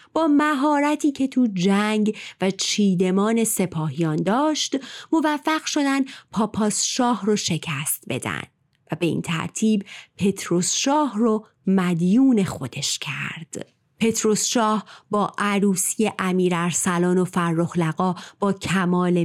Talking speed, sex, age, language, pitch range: 110 wpm, female, 30-49, Persian, 170-215 Hz